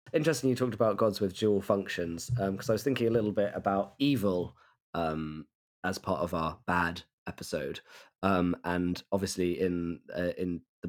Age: 20-39